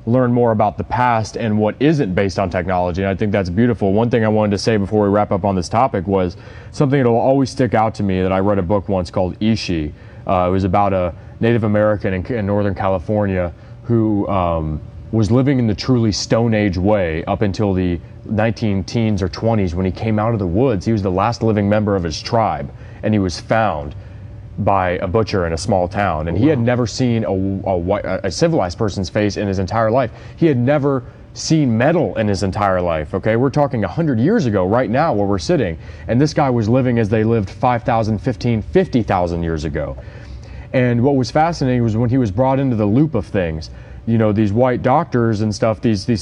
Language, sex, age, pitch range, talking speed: English, male, 30-49, 100-120 Hz, 225 wpm